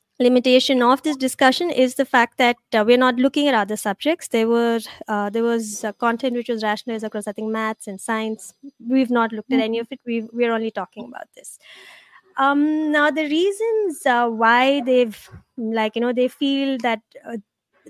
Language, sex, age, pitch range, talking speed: English, female, 20-39, 230-280 Hz, 200 wpm